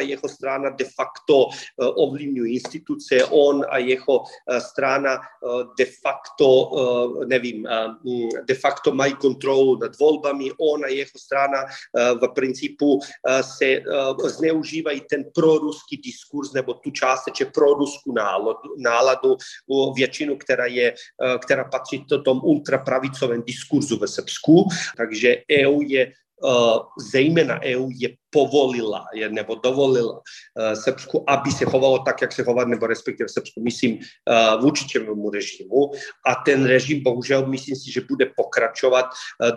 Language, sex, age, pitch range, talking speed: Czech, male, 40-59, 125-140 Hz, 130 wpm